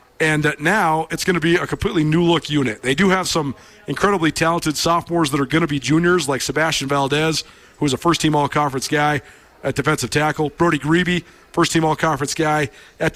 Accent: American